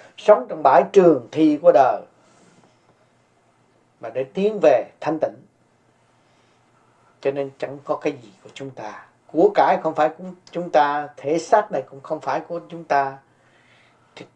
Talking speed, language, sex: 165 wpm, Vietnamese, male